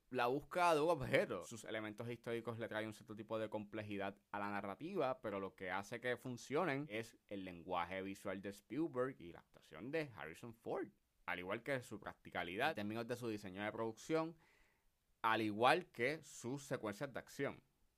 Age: 20-39